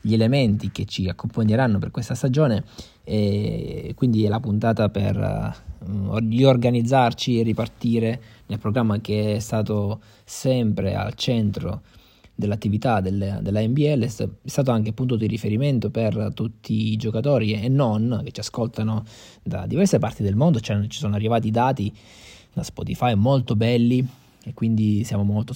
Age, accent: 20-39, native